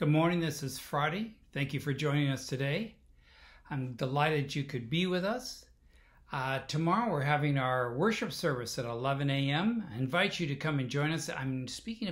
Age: 60-79